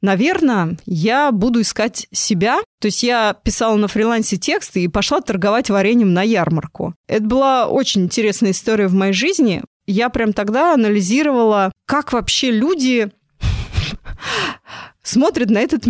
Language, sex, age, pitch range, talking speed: Russian, female, 20-39, 190-240 Hz, 135 wpm